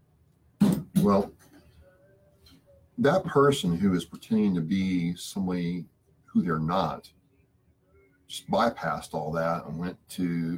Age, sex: 40-59, male